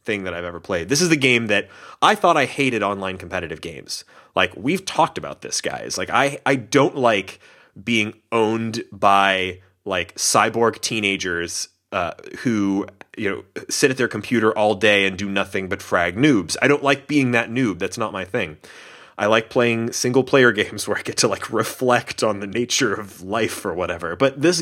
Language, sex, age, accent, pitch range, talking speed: English, male, 30-49, American, 95-130 Hz, 195 wpm